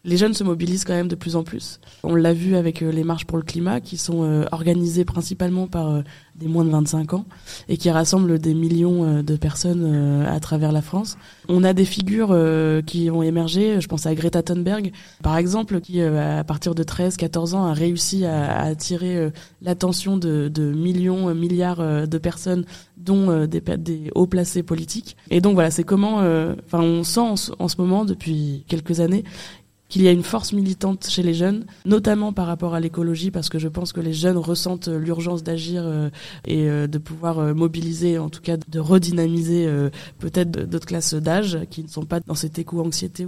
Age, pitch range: 20-39, 160-180 Hz